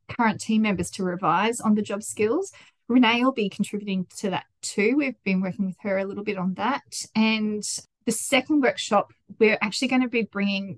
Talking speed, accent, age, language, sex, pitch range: 200 wpm, Australian, 20-39, English, female, 190-230 Hz